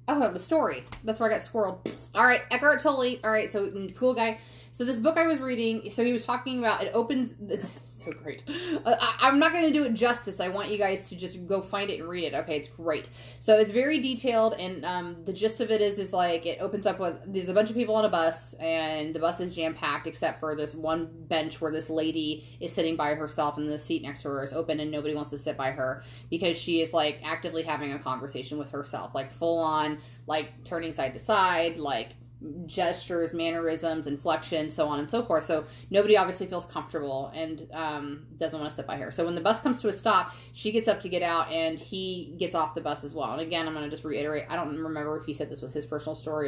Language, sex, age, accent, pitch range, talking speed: English, female, 20-39, American, 150-200 Hz, 245 wpm